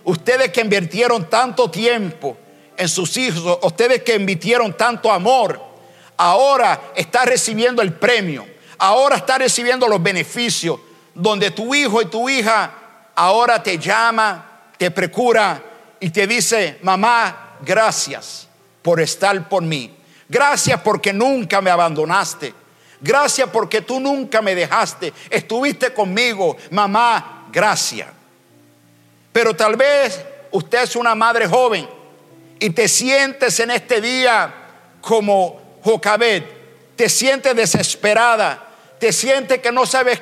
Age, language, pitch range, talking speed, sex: 50-69, English, 200-255 Hz, 120 wpm, male